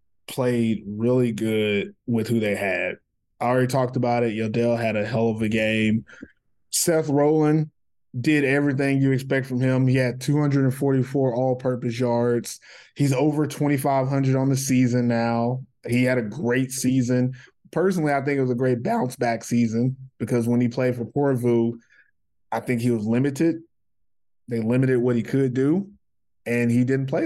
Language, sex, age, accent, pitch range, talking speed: English, male, 20-39, American, 115-130 Hz, 165 wpm